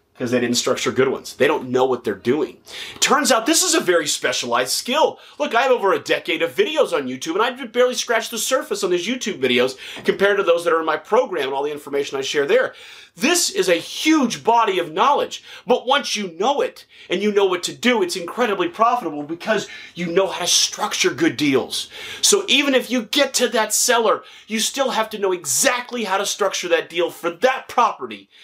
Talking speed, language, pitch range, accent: 225 wpm, English, 170-275 Hz, American